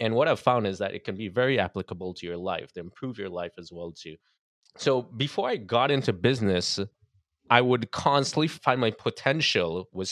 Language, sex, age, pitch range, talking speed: English, male, 20-39, 95-120 Hz, 200 wpm